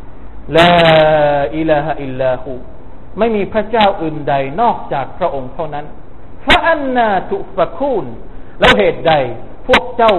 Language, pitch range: Thai, 125-175 Hz